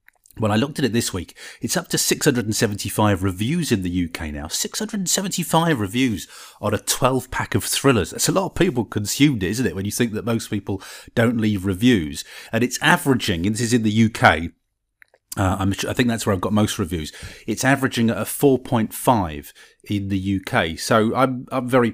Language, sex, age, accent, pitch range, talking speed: English, male, 30-49, British, 100-130 Hz, 195 wpm